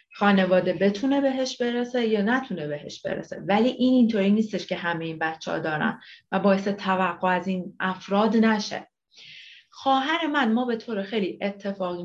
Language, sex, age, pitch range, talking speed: Persian, female, 30-49, 175-235 Hz, 160 wpm